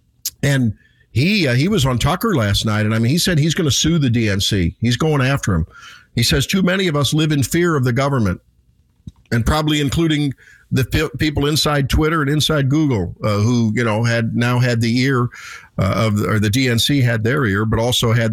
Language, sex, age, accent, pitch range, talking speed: English, male, 50-69, American, 110-150 Hz, 220 wpm